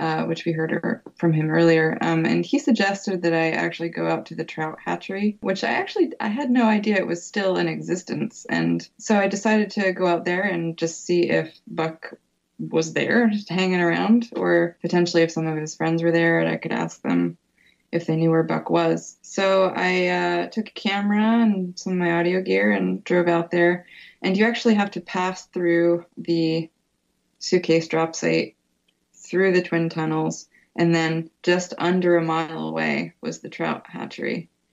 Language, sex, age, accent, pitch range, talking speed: English, female, 20-39, American, 160-195 Hz, 195 wpm